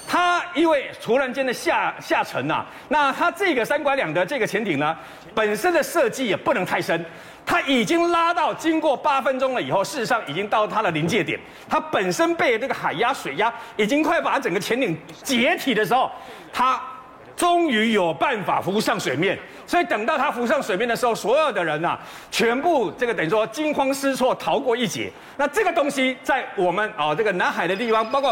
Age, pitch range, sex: 50-69, 230-315 Hz, male